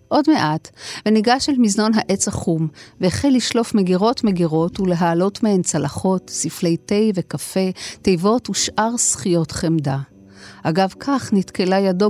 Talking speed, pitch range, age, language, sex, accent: 120 wpm, 165-215 Hz, 40-59, Hebrew, female, native